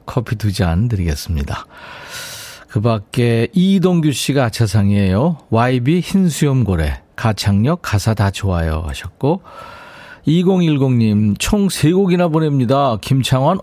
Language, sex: Korean, male